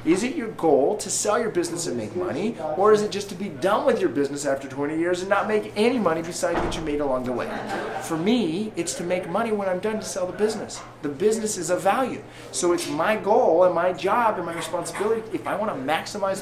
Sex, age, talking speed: male, 30-49, 250 wpm